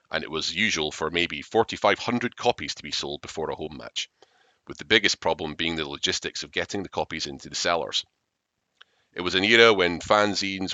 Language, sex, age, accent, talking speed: English, male, 30-49, British, 195 wpm